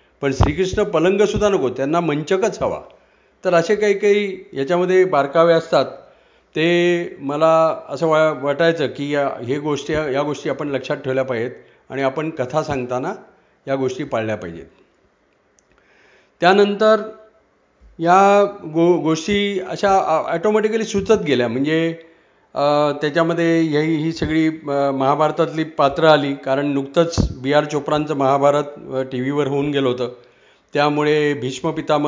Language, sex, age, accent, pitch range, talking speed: Marathi, male, 40-59, native, 135-175 Hz, 120 wpm